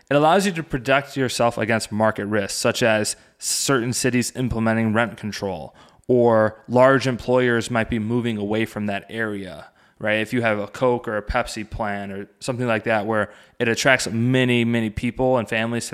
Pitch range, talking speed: 105-125 Hz, 185 wpm